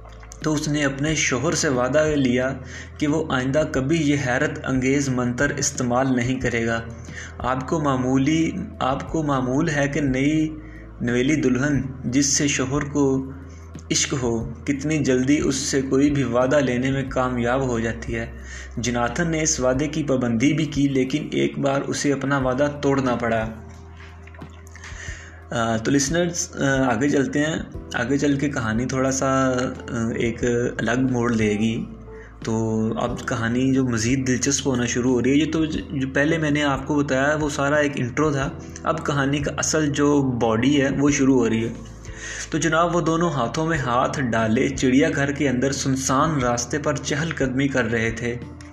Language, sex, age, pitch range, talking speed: Urdu, male, 20-39, 120-145 Hz, 170 wpm